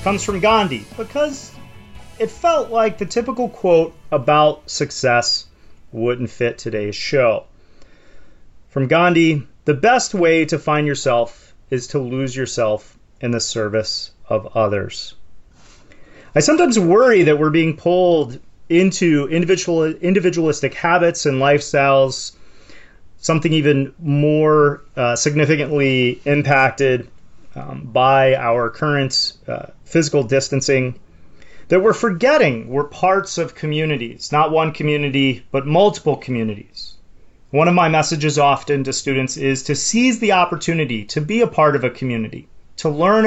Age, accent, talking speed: 30-49, American, 130 wpm